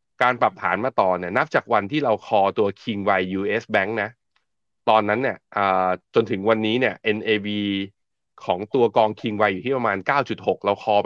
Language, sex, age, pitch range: Thai, male, 20-39, 95-120 Hz